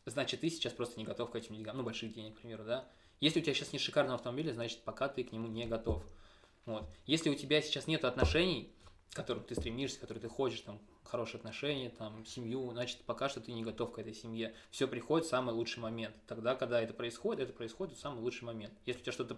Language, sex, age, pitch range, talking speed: Russian, male, 20-39, 115-140 Hz, 240 wpm